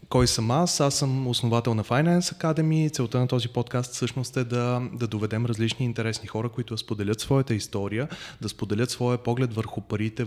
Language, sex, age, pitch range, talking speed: Bulgarian, male, 20-39, 110-130 Hz, 185 wpm